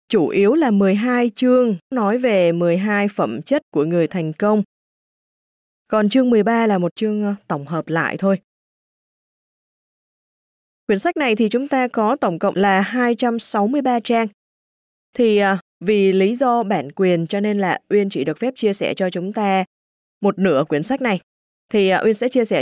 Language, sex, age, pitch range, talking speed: Vietnamese, female, 20-39, 190-235 Hz, 175 wpm